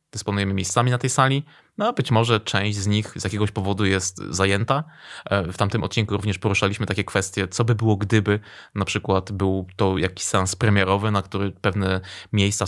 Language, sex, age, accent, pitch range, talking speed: Polish, male, 20-39, native, 100-130 Hz, 185 wpm